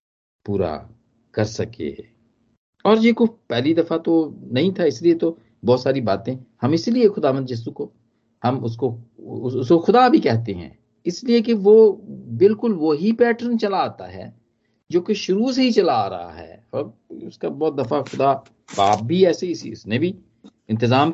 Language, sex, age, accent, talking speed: Hindi, male, 50-69, native, 170 wpm